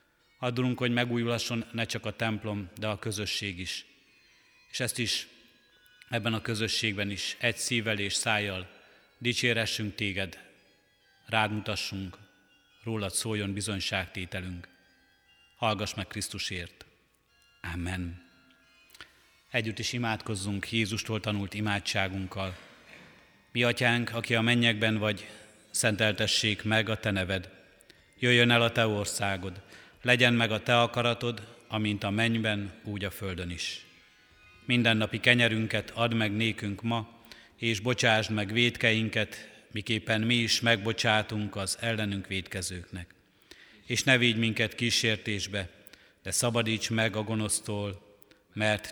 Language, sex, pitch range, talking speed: Hungarian, male, 100-115 Hz, 115 wpm